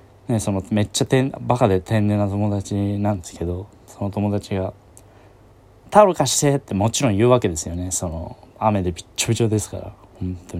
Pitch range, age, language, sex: 95-110 Hz, 20-39, Japanese, male